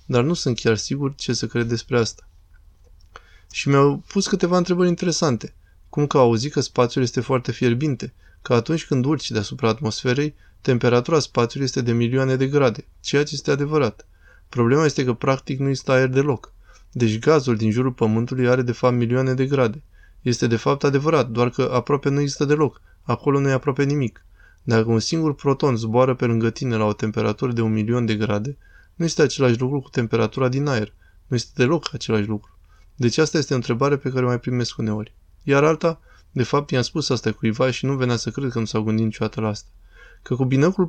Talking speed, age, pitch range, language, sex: 200 wpm, 20-39, 115-140 Hz, Romanian, male